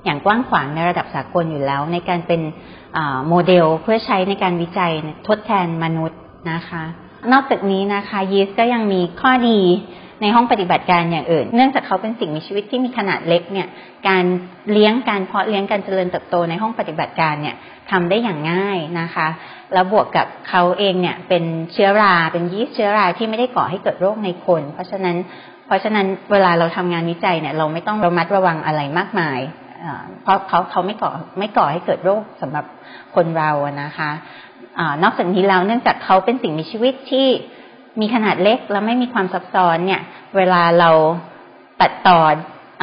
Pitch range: 170-205 Hz